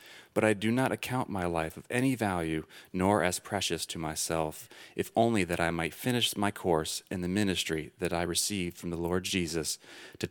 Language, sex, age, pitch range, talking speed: English, male, 30-49, 85-105 Hz, 200 wpm